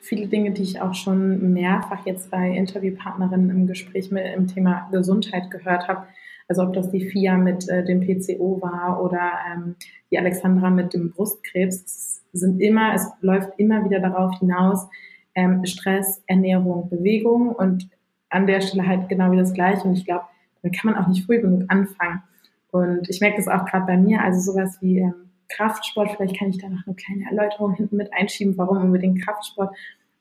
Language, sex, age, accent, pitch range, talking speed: German, female, 20-39, German, 185-200 Hz, 185 wpm